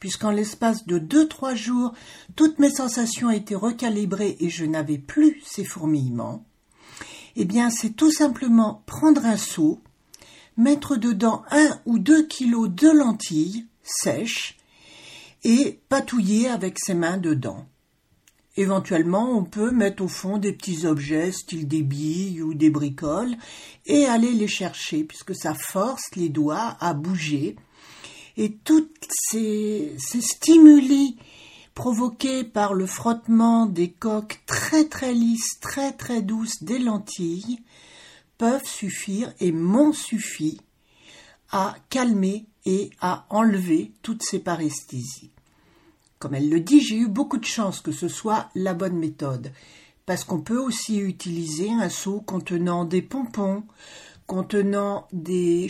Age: 60-79